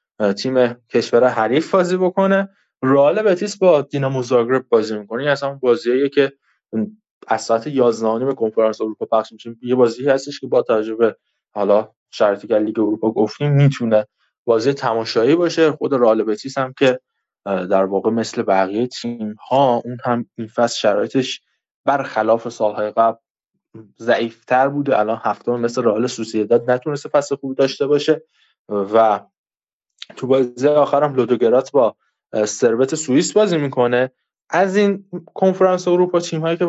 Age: 20-39